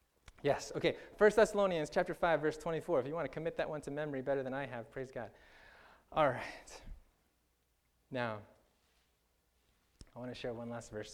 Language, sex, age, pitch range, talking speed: English, male, 20-39, 95-150 Hz, 180 wpm